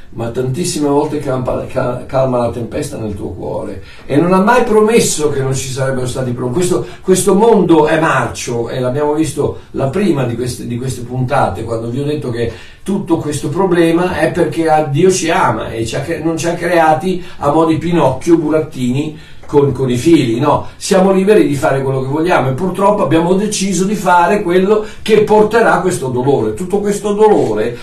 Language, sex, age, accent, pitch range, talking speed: Italian, male, 50-69, native, 130-175 Hz, 175 wpm